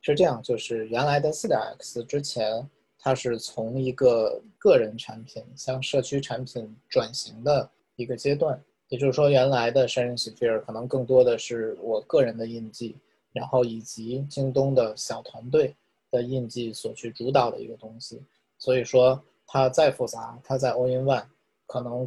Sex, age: male, 20-39